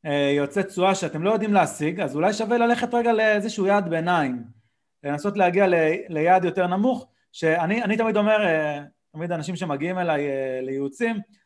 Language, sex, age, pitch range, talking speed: Hebrew, male, 30-49, 145-205 Hz, 140 wpm